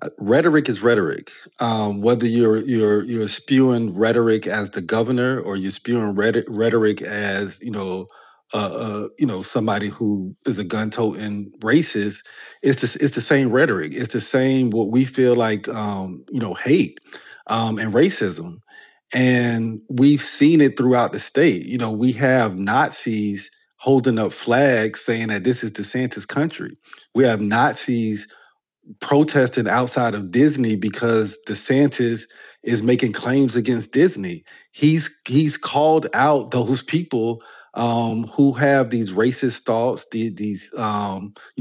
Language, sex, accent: English, male, American